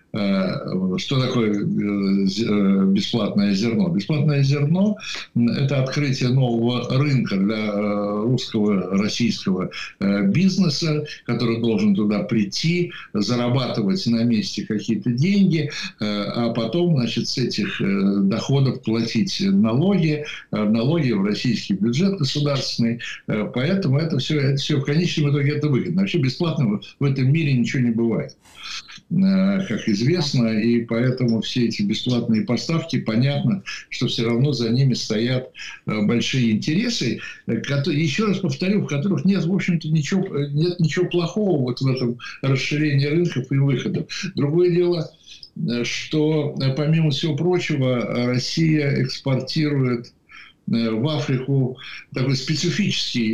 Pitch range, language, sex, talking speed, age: 115-160 Hz, Ukrainian, male, 115 wpm, 60-79